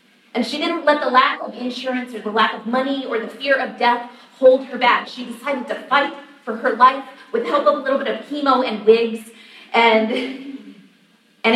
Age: 30-49